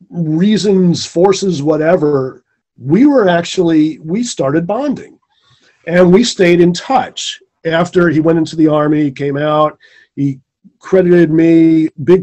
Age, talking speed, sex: 40-59, 130 wpm, male